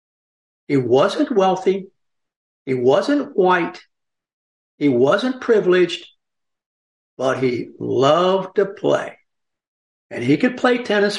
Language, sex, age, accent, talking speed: English, male, 60-79, American, 100 wpm